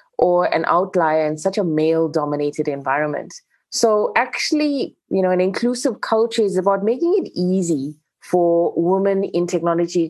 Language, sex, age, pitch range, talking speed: English, female, 20-39, 160-200 Hz, 145 wpm